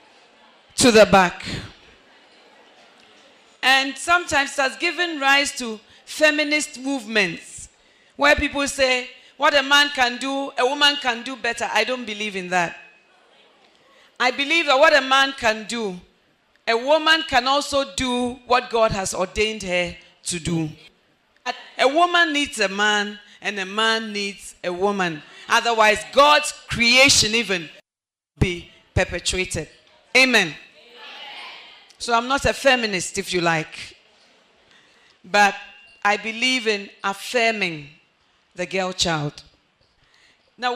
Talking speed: 120 wpm